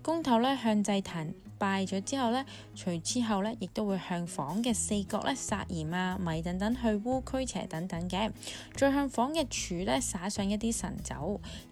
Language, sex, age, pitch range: Chinese, female, 20-39, 185-245 Hz